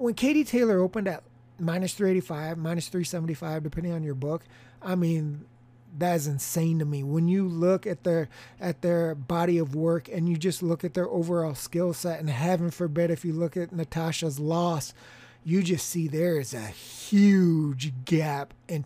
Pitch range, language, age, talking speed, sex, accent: 145-185 Hz, English, 30-49, 180 wpm, male, American